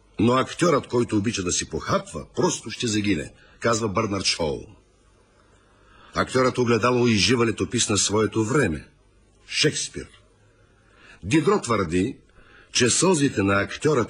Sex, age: male, 50-69